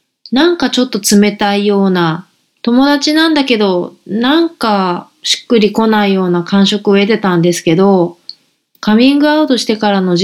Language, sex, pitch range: Japanese, female, 195-265 Hz